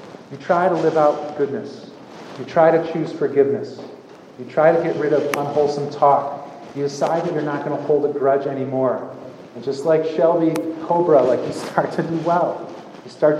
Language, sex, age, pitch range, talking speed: English, male, 30-49, 125-160 Hz, 195 wpm